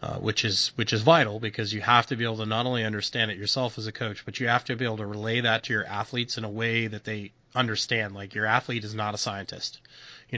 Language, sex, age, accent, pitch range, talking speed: English, male, 30-49, American, 105-120 Hz, 270 wpm